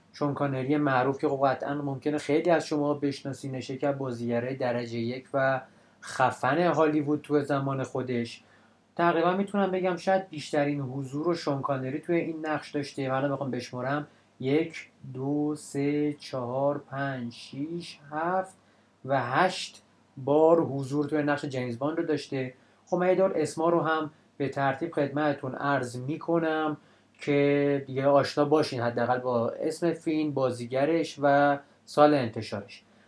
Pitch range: 130-160 Hz